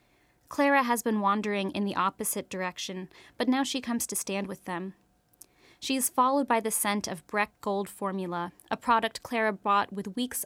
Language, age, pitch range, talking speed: English, 20-39, 185-225 Hz, 185 wpm